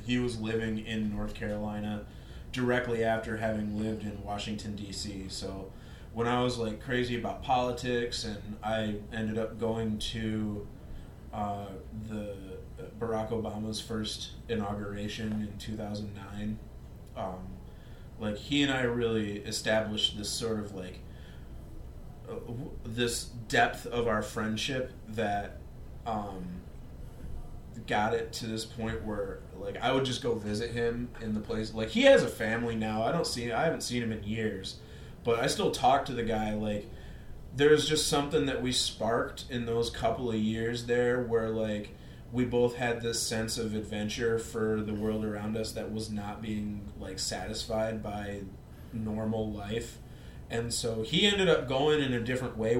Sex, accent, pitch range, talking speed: male, American, 105-120 Hz, 155 wpm